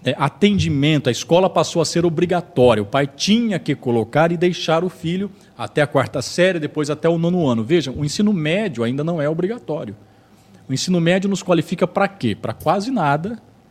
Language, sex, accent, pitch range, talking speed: Portuguese, male, Brazilian, 125-180 Hz, 195 wpm